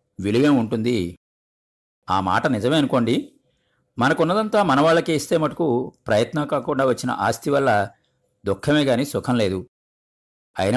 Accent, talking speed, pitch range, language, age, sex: native, 105 wpm, 105-140 Hz, Telugu, 50-69, male